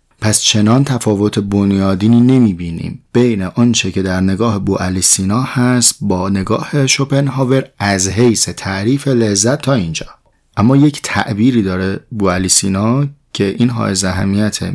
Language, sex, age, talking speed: Persian, male, 30-49, 140 wpm